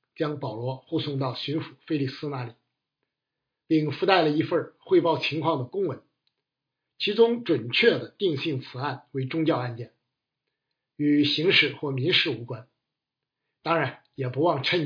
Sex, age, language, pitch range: male, 50-69, Chinese, 130-160 Hz